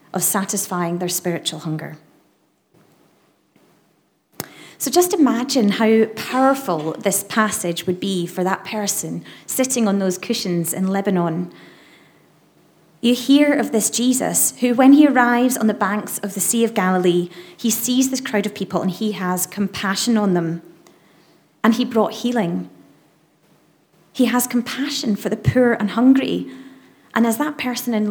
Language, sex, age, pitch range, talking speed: English, female, 30-49, 195-240 Hz, 145 wpm